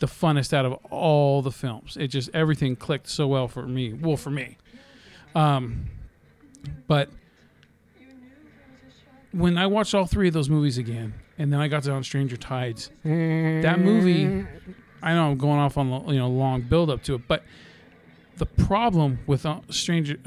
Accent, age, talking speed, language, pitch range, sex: American, 40-59, 175 wpm, English, 130-175 Hz, male